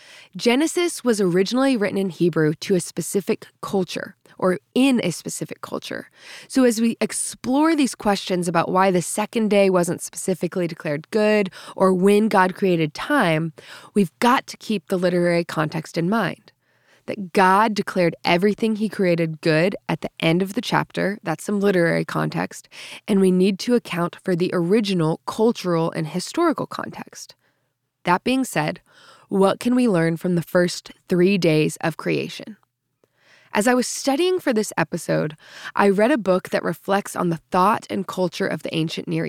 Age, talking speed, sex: 20-39, 165 wpm, female